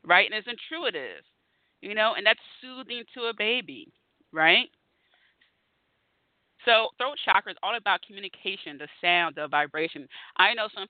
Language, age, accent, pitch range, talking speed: English, 30-49, American, 160-220 Hz, 150 wpm